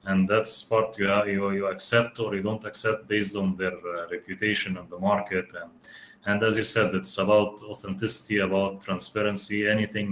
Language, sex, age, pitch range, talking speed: English, male, 30-49, 90-105 Hz, 180 wpm